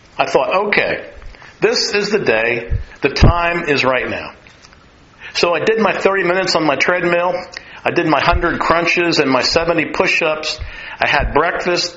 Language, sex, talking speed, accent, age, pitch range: English, male, 170 wpm, American, 50-69, 140-200 Hz